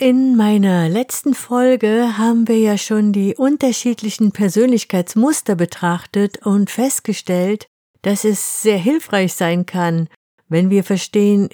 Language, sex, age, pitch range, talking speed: German, female, 50-69, 190-230 Hz, 120 wpm